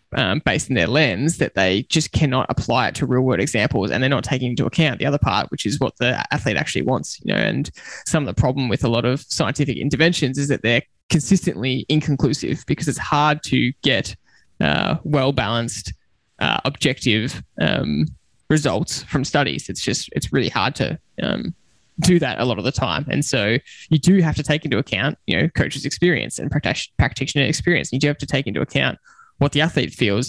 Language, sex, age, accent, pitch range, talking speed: English, male, 10-29, Australian, 125-155 Hz, 210 wpm